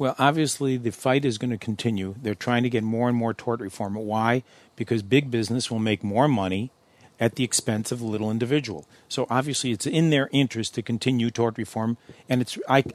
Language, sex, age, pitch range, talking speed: English, male, 50-69, 115-140 Hz, 210 wpm